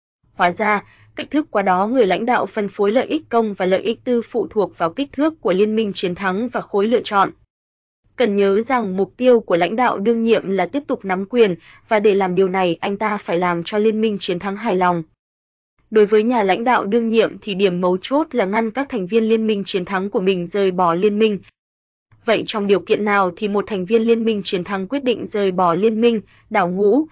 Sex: female